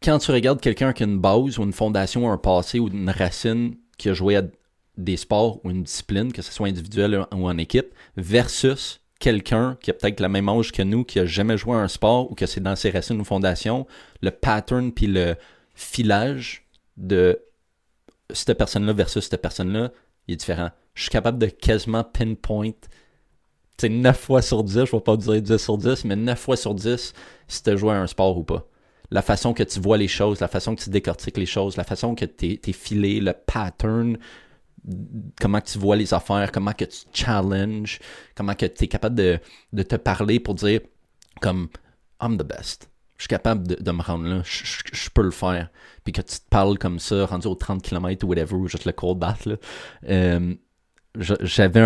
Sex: male